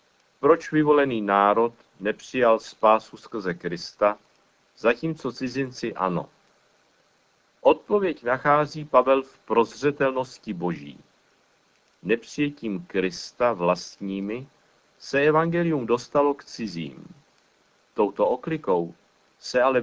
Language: Czech